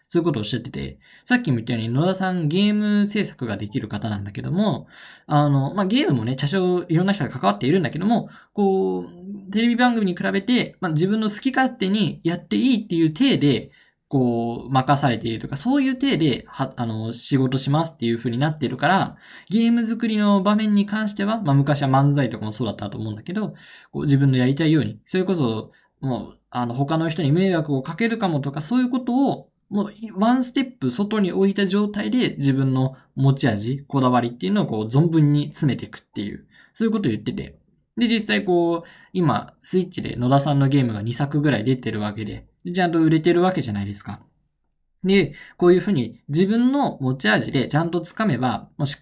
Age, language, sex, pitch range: 20-39, Japanese, male, 130-205 Hz